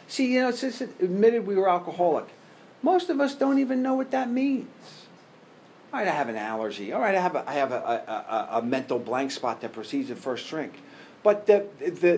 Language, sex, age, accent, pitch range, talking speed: English, male, 50-69, American, 175-235 Hz, 220 wpm